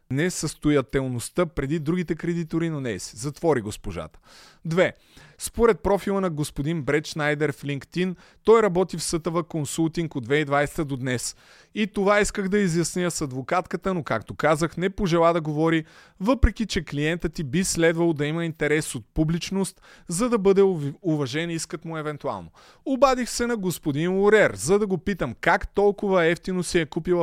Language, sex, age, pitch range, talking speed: Bulgarian, male, 30-49, 145-195 Hz, 165 wpm